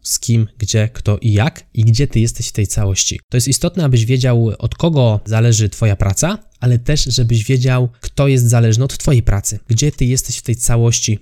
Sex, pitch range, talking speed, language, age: male, 110-130 Hz, 210 wpm, Polish, 20-39